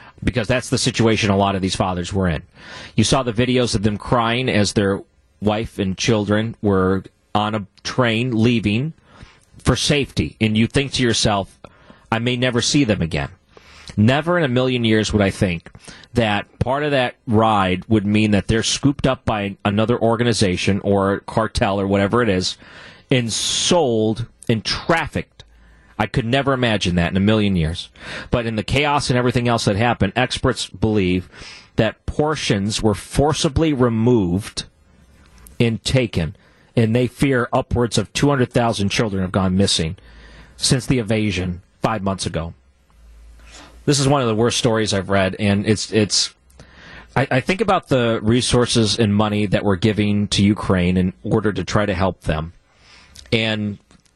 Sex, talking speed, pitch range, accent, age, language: male, 165 wpm, 95-120 Hz, American, 40-59, English